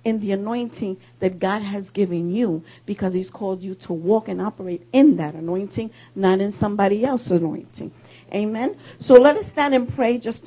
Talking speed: 185 wpm